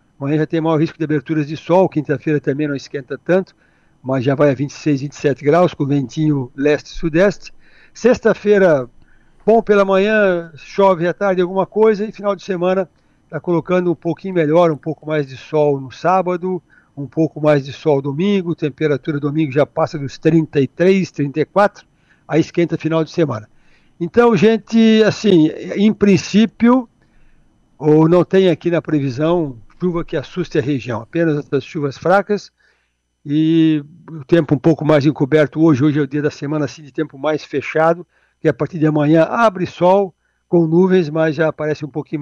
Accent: Brazilian